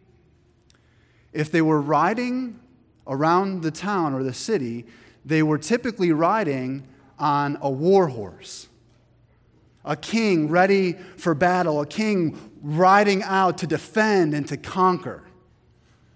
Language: English